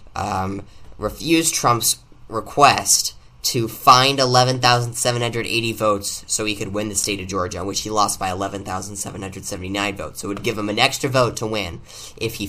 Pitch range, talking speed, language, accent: 100-115 Hz, 165 wpm, English, American